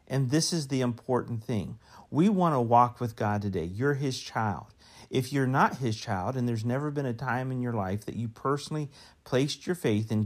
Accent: American